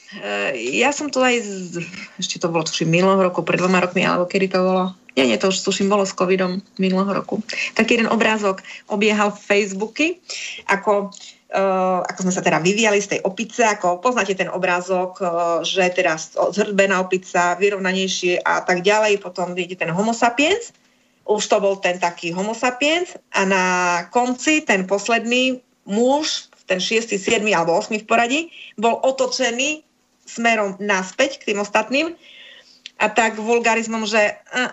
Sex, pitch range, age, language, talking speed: female, 185-235 Hz, 30-49, Slovak, 160 wpm